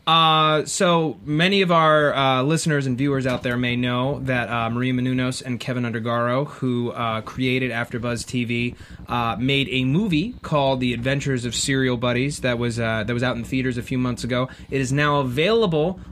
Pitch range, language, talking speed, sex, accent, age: 125-150 Hz, English, 195 wpm, male, American, 30-49